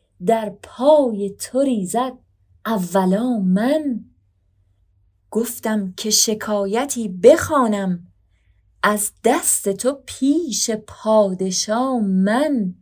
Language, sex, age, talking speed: Persian, female, 30-49, 75 wpm